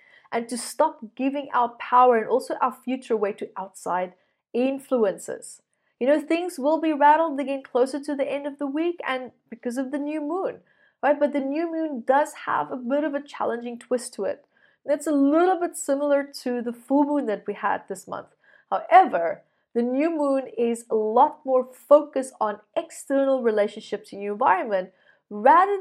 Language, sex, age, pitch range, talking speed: English, female, 30-49, 230-290 Hz, 185 wpm